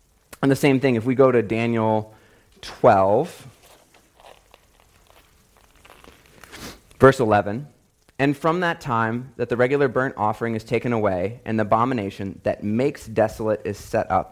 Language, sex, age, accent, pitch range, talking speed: English, male, 30-49, American, 105-130 Hz, 140 wpm